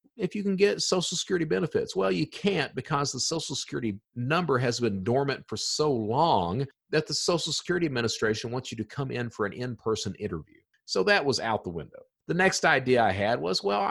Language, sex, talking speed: English, male, 205 wpm